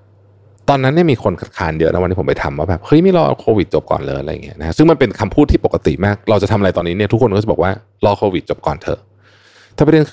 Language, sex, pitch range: Thai, male, 100-125 Hz